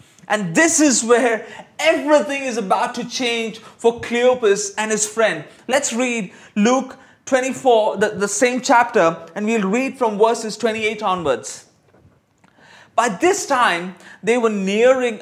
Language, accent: English, Indian